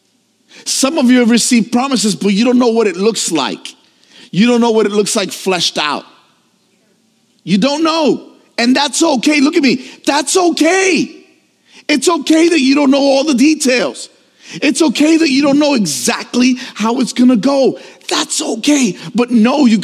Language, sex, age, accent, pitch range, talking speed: English, male, 40-59, American, 195-250 Hz, 180 wpm